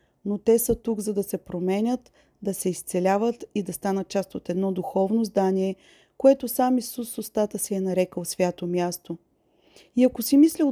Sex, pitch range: female, 190-235 Hz